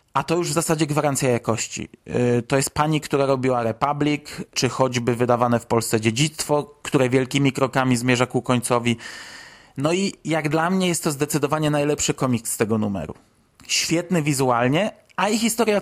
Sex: male